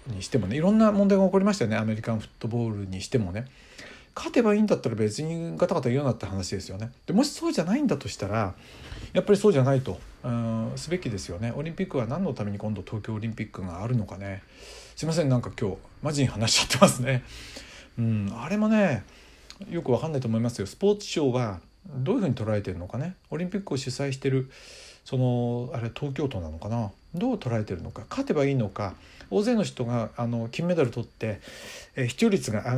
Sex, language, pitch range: male, Japanese, 105-155 Hz